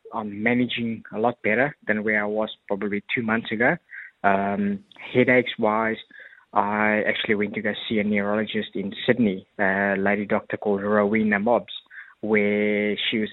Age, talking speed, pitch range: 20-39, 155 wpm, 105-110 Hz